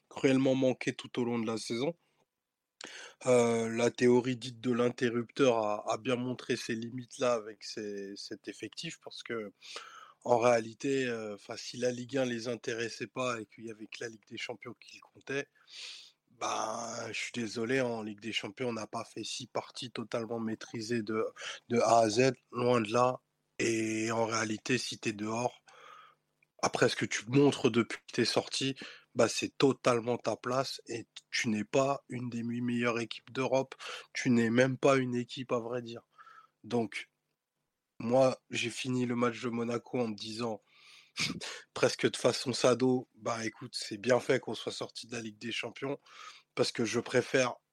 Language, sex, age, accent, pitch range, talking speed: French, male, 20-39, French, 115-130 Hz, 180 wpm